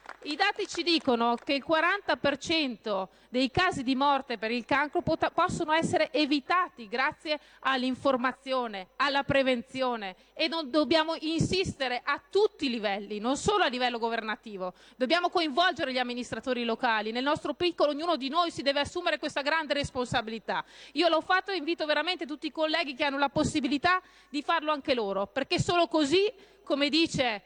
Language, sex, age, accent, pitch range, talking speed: Italian, female, 30-49, native, 255-320 Hz, 160 wpm